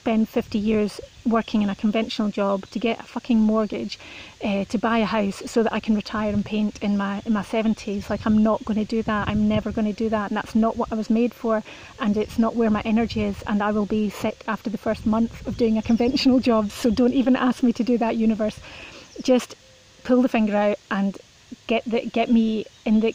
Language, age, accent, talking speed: English, 30-49, British, 240 wpm